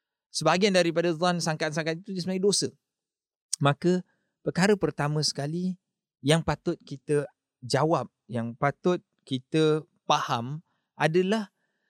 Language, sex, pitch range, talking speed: English, male, 145-205 Hz, 100 wpm